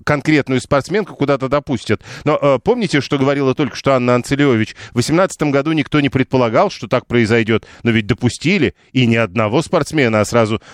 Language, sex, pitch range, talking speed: Russian, male, 115-140 Hz, 175 wpm